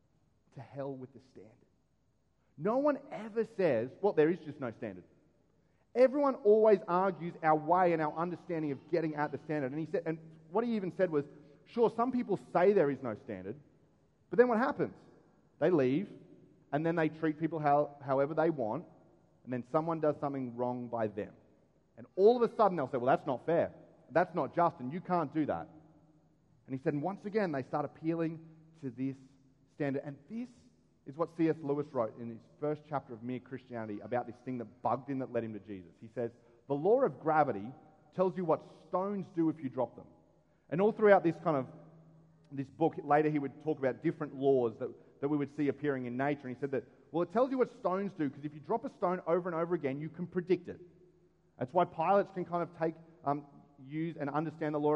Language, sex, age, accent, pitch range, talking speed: English, male, 30-49, Australian, 135-175 Hz, 220 wpm